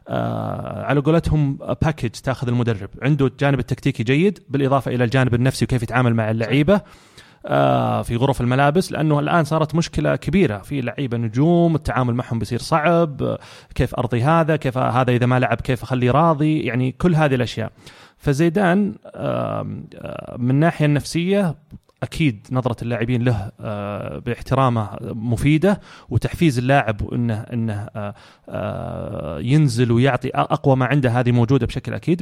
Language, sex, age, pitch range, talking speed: Arabic, male, 30-49, 125-155 Hz, 130 wpm